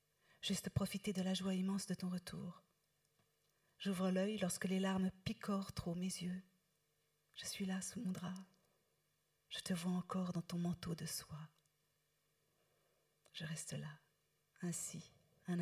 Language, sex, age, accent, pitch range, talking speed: French, female, 40-59, French, 165-200 Hz, 145 wpm